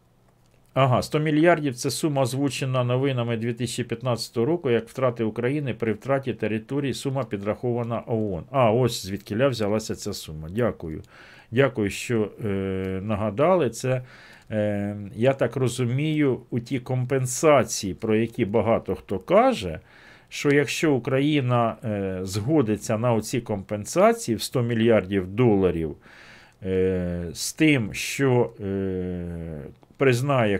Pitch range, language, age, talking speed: 100-135 Hz, Ukrainian, 50-69, 120 wpm